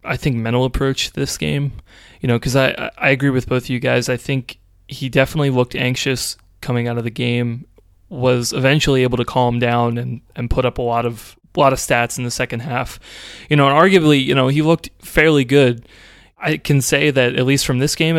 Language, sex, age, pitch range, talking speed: English, male, 20-39, 120-135 Hz, 225 wpm